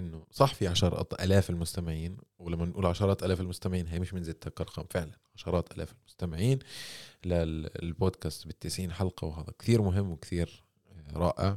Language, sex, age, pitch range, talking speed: Arabic, male, 20-39, 85-110 Hz, 145 wpm